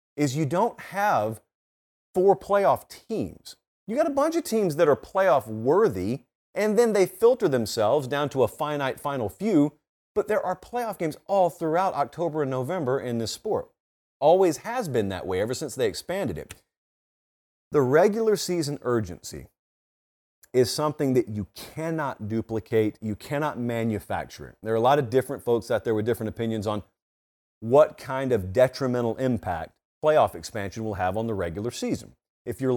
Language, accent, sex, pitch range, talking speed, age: English, American, male, 115-165 Hz, 170 wpm, 40-59